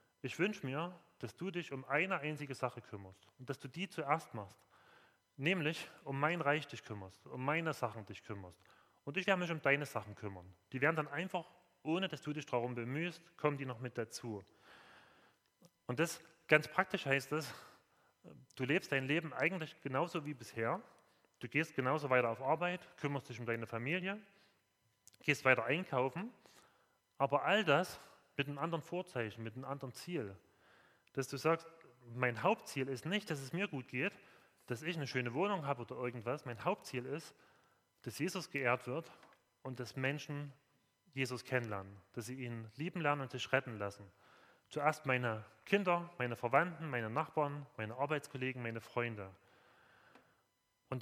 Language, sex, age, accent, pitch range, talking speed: German, male, 30-49, German, 120-160 Hz, 170 wpm